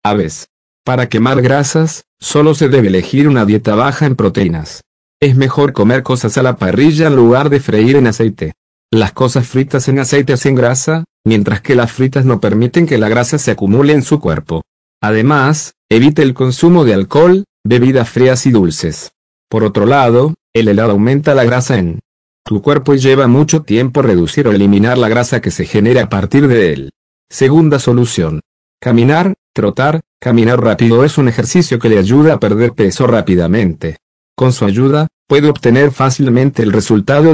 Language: English